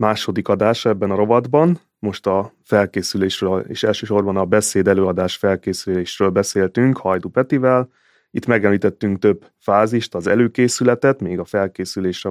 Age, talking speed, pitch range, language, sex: 30-49, 125 wpm, 95-115 Hz, Hungarian, male